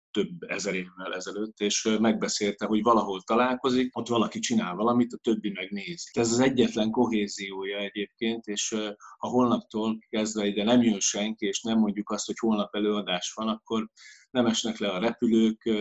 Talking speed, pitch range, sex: 165 wpm, 100-120 Hz, male